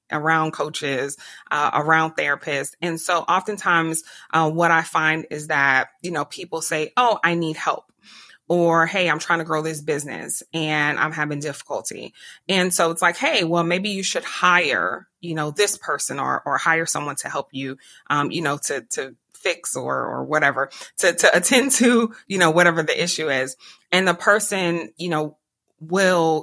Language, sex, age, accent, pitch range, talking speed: English, female, 30-49, American, 150-175 Hz, 180 wpm